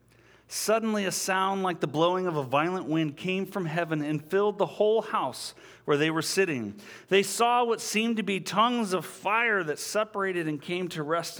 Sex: male